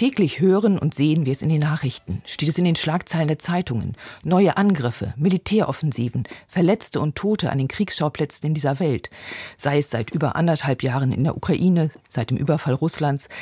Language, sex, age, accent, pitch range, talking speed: German, female, 50-69, German, 130-170 Hz, 185 wpm